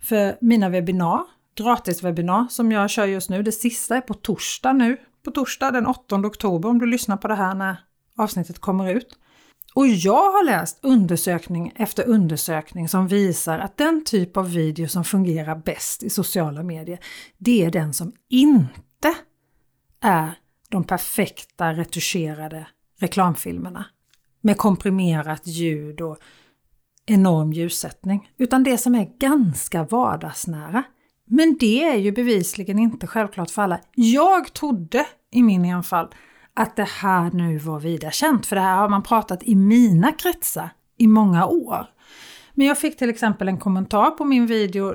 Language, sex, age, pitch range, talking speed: Swedish, female, 40-59, 175-240 Hz, 155 wpm